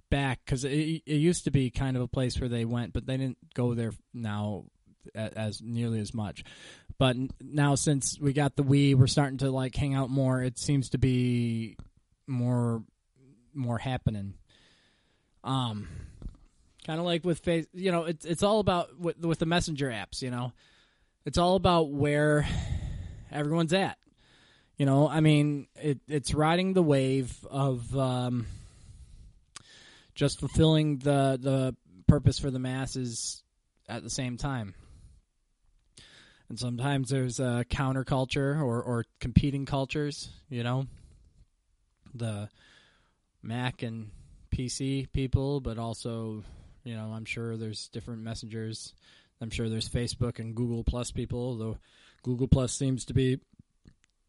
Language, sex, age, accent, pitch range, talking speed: English, male, 20-39, American, 115-140 Hz, 145 wpm